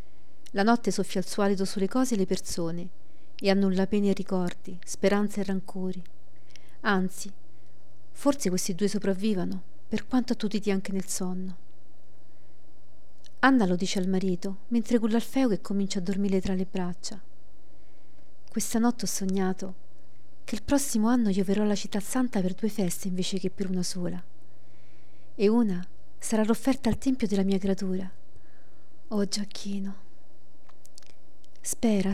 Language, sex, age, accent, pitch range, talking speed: Italian, female, 40-59, native, 190-230 Hz, 145 wpm